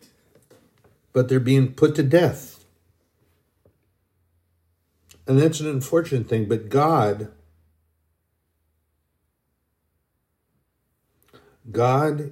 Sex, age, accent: male, 60-79, American